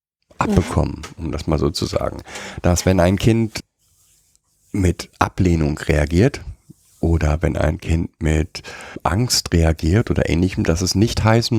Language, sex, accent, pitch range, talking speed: German, male, German, 80-105 Hz, 140 wpm